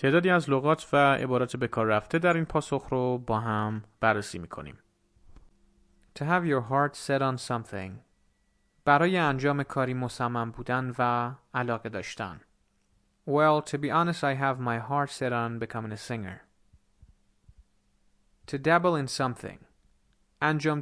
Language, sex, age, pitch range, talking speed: Persian, male, 30-49, 100-145 Hz, 140 wpm